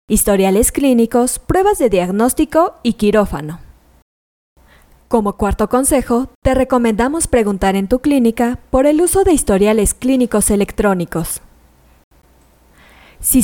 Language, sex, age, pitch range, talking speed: Spanish, female, 20-39, 195-260 Hz, 105 wpm